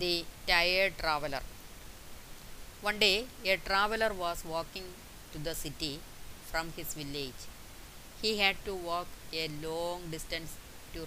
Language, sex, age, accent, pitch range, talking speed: Malayalam, female, 30-49, native, 145-180 Hz, 125 wpm